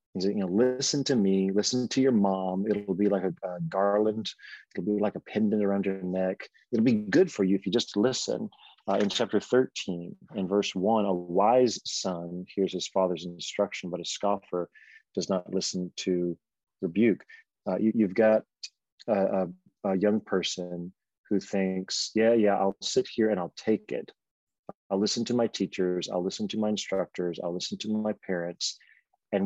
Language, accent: English, American